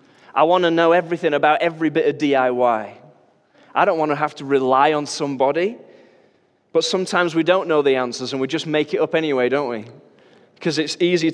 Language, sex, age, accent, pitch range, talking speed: English, male, 20-39, British, 125-155 Hz, 200 wpm